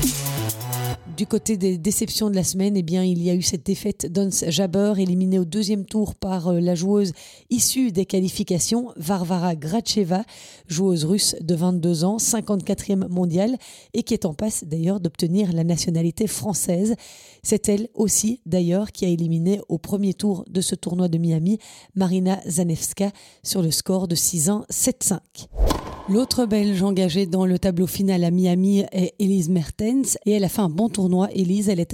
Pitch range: 180-205 Hz